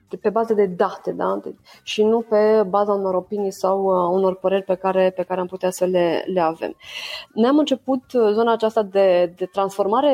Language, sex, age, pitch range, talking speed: Romanian, female, 20-39, 195-230 Hz, 195 wpm